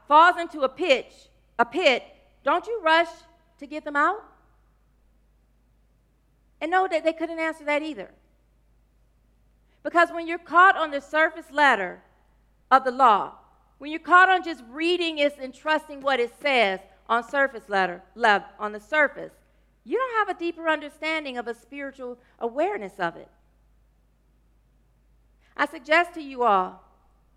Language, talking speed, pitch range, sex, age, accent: English, 145 wpm, 240-325 Hz, female, 40-59, American